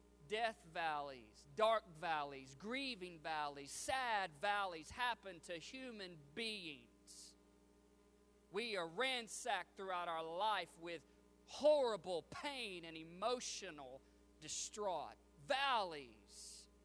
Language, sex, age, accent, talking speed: English, male, 40-59, American, 90 wpm